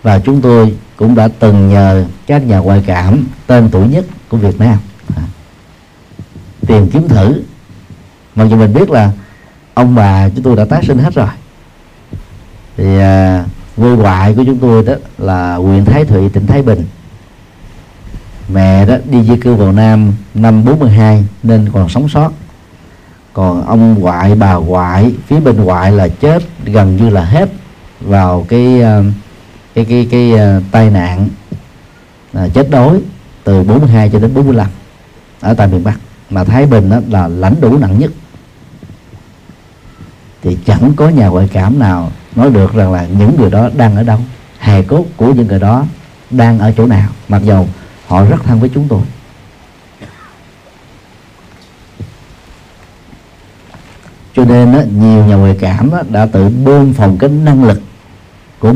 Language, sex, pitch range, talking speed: Vietnamese, male, 95-120 Hz, 160 wpm